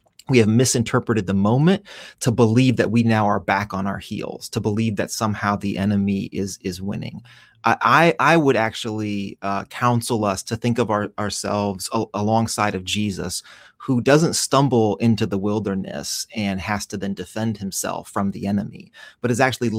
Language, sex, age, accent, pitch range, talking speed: English, male, 30-49, American, 100-120 Hz, 170 wpm